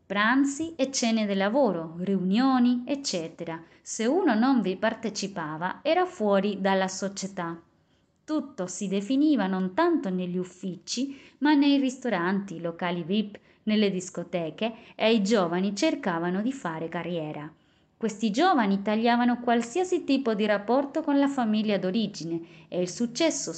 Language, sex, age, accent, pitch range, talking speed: Italian, female, 20-39, native, 175-255 Hz, 130 wpm